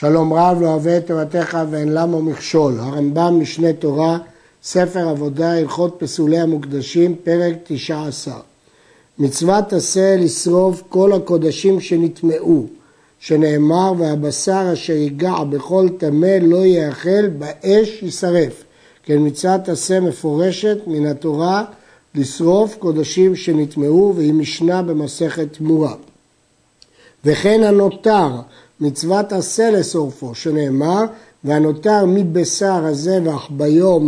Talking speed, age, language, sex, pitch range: 100 wpm, 60-79, Hebrew, male, 155-195 Hz